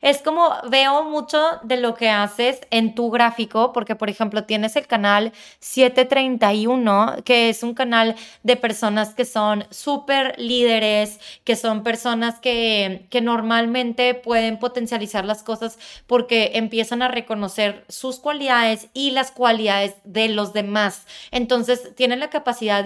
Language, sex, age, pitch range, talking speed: English, female, 20-39, 210-250 Hz, 140 wpm